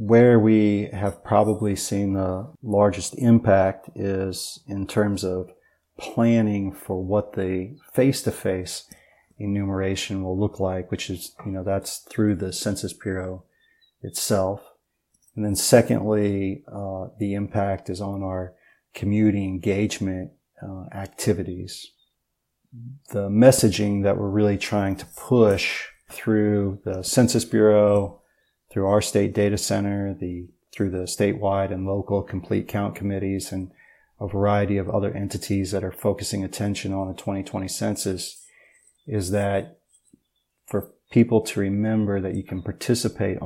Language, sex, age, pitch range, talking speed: English, male, 40-59, 95-105 Hz, 130 wpm